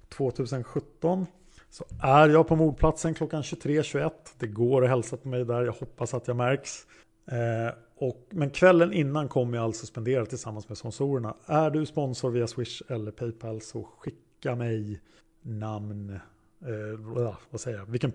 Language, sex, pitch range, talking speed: Swedish, male, 115-150 Hz, 160 wpm